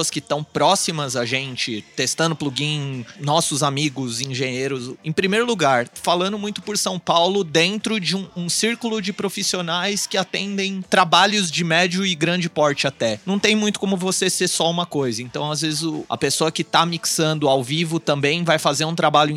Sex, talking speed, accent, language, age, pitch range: male, 185 wpm, Brazilian, Portuguese, 30-49, 150-195 Hz